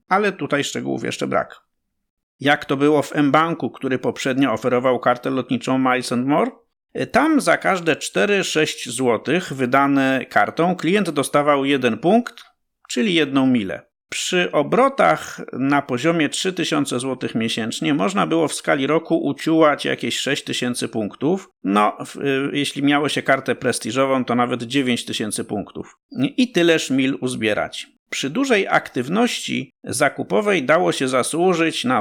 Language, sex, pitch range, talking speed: Polish, male, 130-165 Hz, 130 wpm